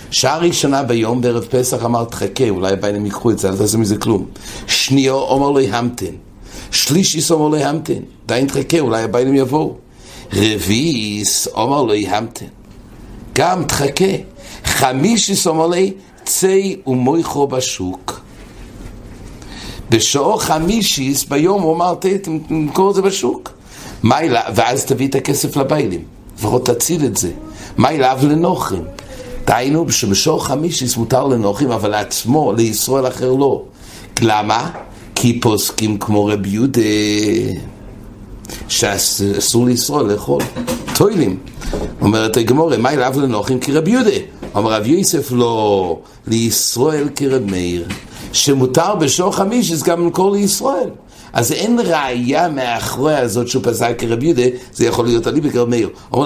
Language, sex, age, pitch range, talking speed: English, male, 60-79, 110-150 Hz, 120 wpm